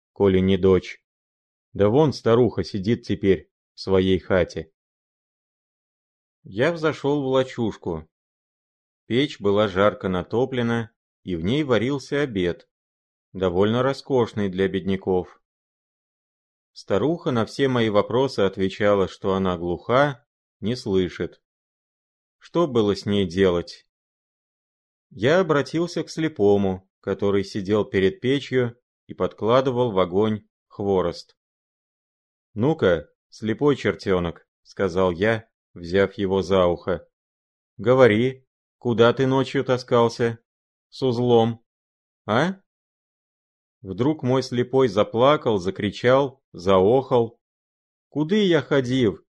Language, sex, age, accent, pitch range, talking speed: Russian, male, 30-49, native, 95-135 Hz, 100 wpm